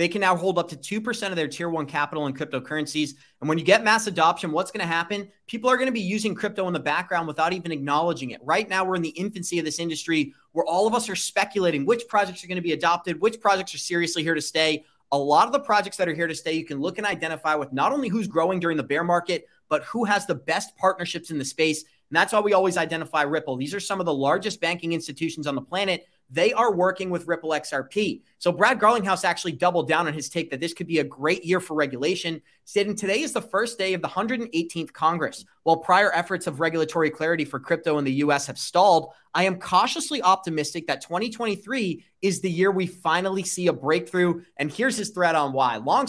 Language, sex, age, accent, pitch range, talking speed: English, male, 30-49, American, 155-200 Hz, 240 wpm